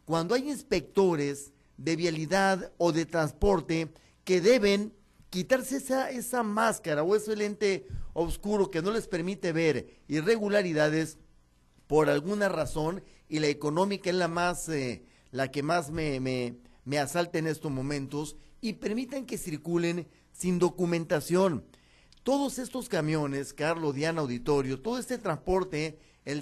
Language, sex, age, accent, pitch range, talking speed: Spanish, male, 40-59, Mexican, 140-185 Hz, 135 wpm